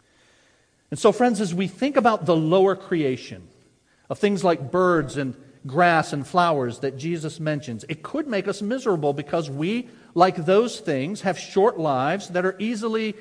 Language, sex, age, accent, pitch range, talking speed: English, male, 50-69, American, 125-185 Hz, 170 wpm